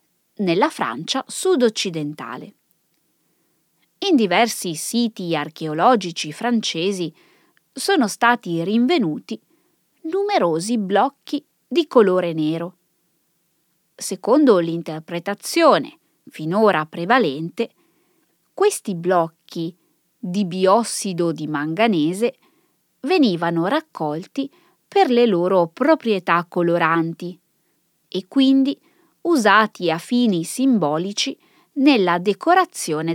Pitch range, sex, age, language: 170-255 Hz, female, 20-39, Italian